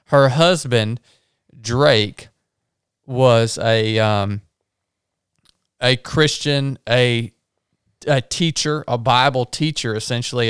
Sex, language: male, English